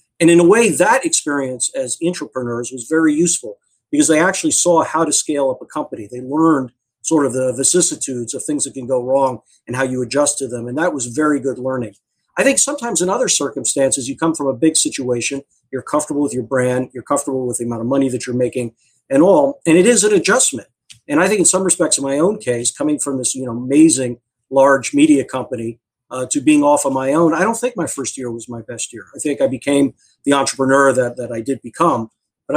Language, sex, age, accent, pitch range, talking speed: English, male, 50-69, American, 125-145 Hz, 235 wpm